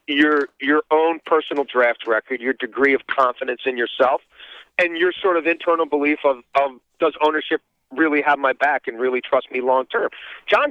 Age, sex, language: 40-59, male, English